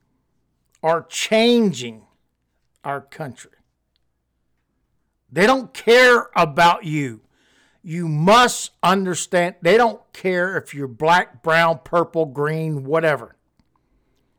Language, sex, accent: English, male, American